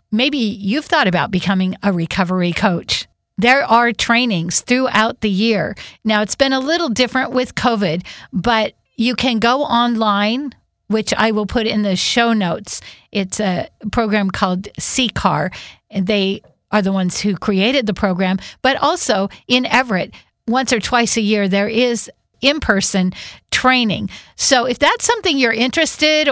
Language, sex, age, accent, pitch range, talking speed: English, female, 50-69, American, 200-240 Hz, 155 wpm